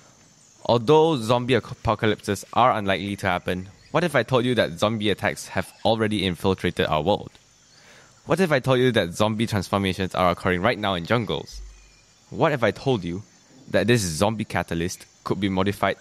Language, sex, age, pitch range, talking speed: English, male, 20-39, 95-125 Hz, 170 wpm